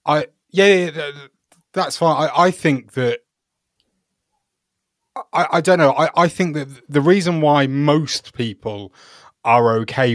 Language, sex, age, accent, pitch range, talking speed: English, male, 20-39, British, 105-140 Hz, 140 wpm